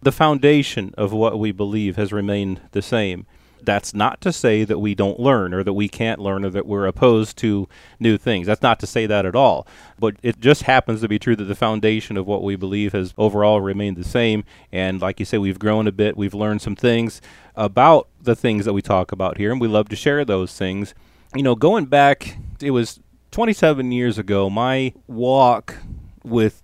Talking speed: 215 wpm